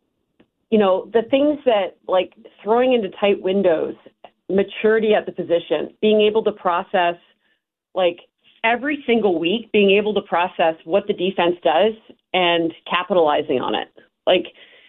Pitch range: 175-220 Hz